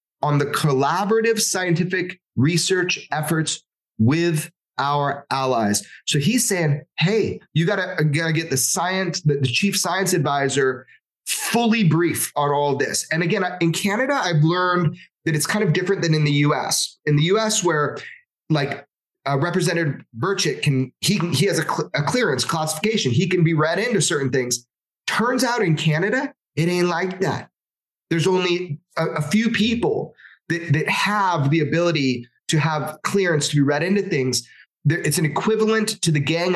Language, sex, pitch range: English, male, 145-180 Hz